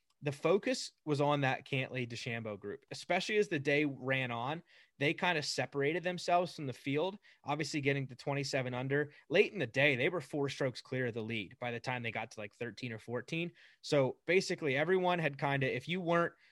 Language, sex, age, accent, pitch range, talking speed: English, male, 20-39, American, 120-150 Hz, 210 wpm